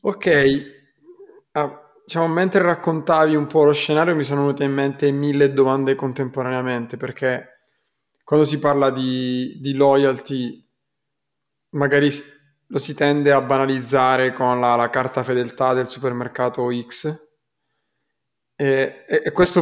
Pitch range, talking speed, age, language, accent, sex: 130-145 Hz, 125 wpm, 20-39, Italian, native, male